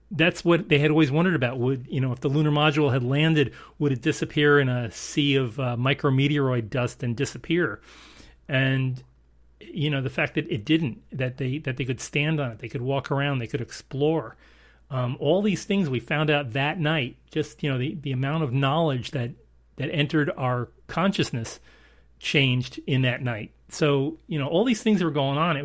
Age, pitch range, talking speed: 40-59, 130-160 Hz, 205 wpm